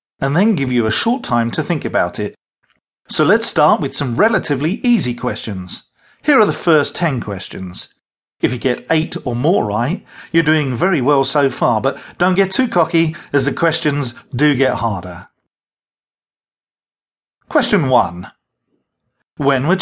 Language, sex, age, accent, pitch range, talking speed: English, male, 40-59, British, 125-165 Hz, 160 wpm